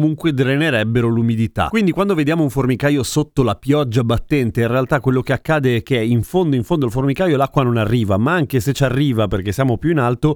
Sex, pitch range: male, 115-155 Hz